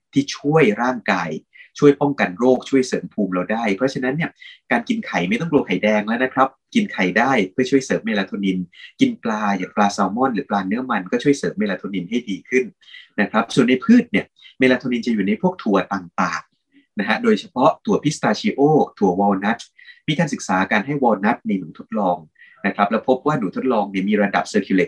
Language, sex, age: Thai, male, 20-39